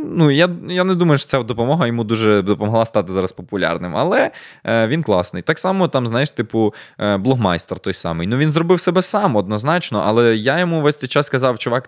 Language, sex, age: Ukrainian, male, 20-39